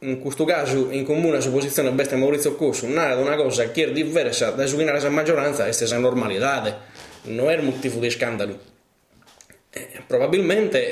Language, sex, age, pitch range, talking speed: Italian, male, 20-39, 125-145 Hz, 175 wpm